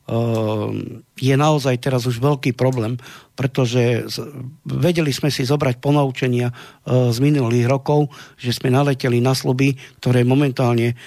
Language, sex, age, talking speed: Slovak, male, 50-69, 120 wpm